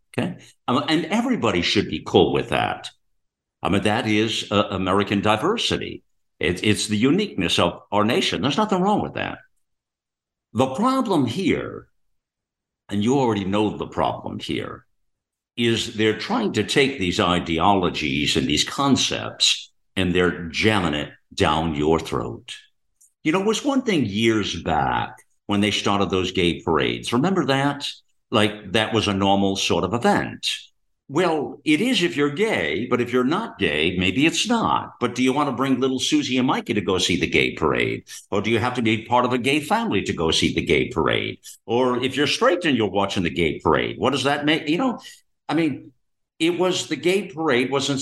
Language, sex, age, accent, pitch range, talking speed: English, male, 60-79, American, 100-155 Hz, 185 wpm